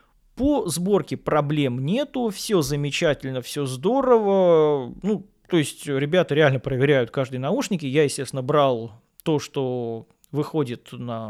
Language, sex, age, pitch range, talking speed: Russian, male, 20-39, 135-195 Hz, 115 wpm